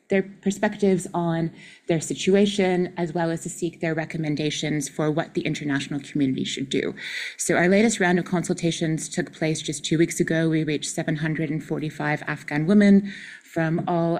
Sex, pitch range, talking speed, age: female, 155-180 Hz, 160 wpm, 30-49